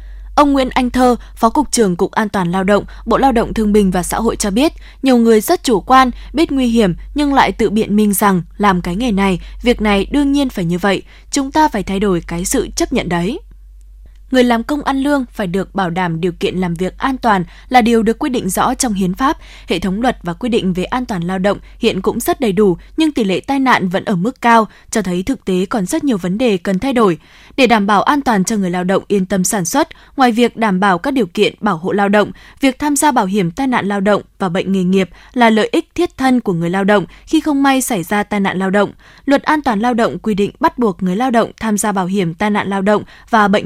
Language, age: Vietnamese, 20-39